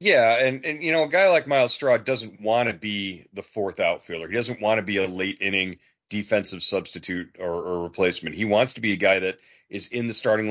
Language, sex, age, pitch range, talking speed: English, male, 40-59, 95-115 Hz, 235 wpm